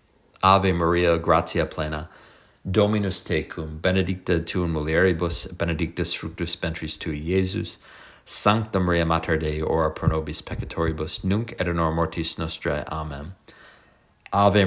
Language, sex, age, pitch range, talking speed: English, male, 30-49, 80-95 Hz, 115 wpm